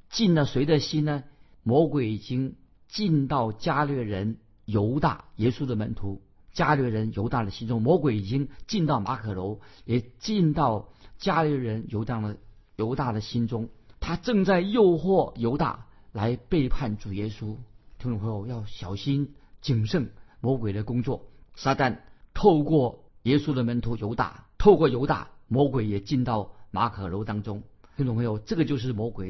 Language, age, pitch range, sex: Chinese, 50-69, 105-145 Hz, male